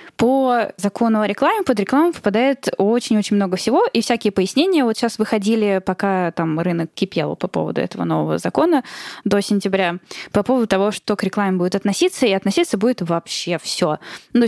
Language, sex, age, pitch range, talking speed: Russian, female, 10-29, 175-225 Hz, 170 wpm